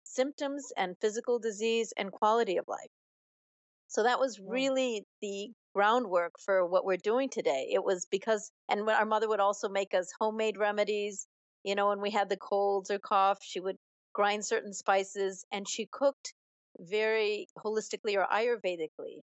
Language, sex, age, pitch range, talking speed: English, female, 40-59, 190-225 Hz, 165 wpm